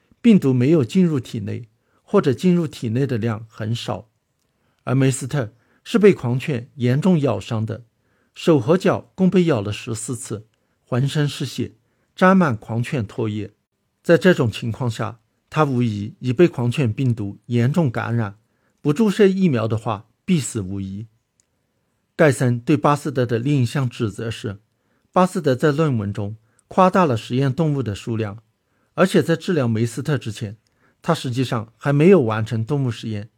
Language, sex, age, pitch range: Chinese, male, 60-79, 115-150 Hz